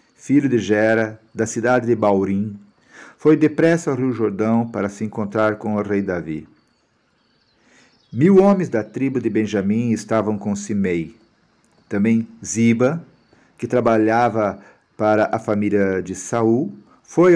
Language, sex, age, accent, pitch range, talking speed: Portuguese, male, 50-69, Brazilian, 105-130 Hz, 130 wpm